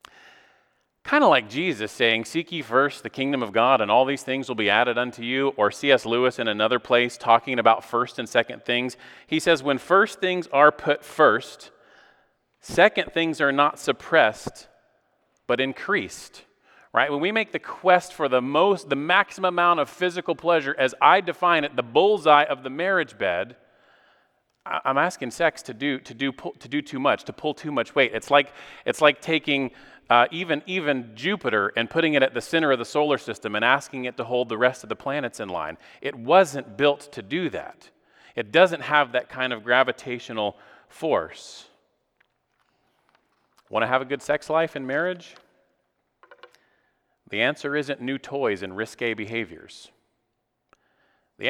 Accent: American